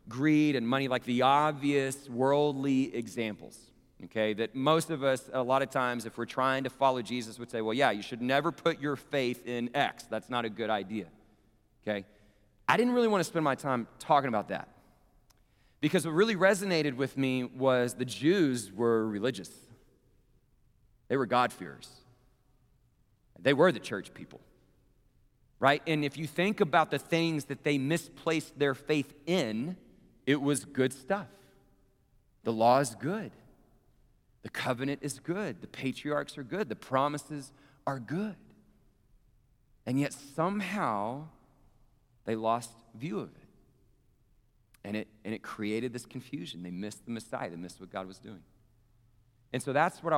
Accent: American